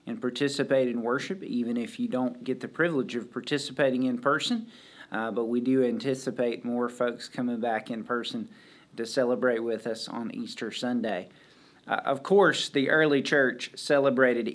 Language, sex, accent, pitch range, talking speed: English, male, American, 130-160 Hz, 165 wpm